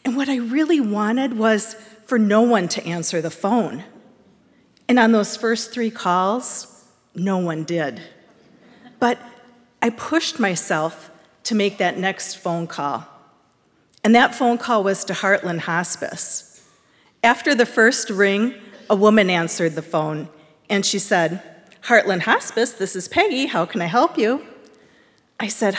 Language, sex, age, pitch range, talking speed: English, female, 40-59, 180-235 Hz, 150 wpm